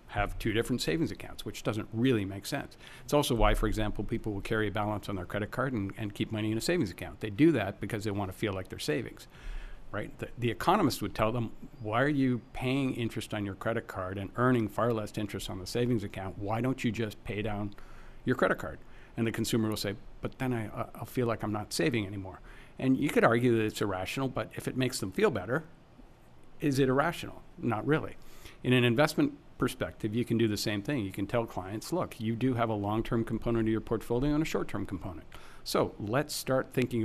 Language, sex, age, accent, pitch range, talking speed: English, male, 60-79, American, 105-130 Hz, 230 wpm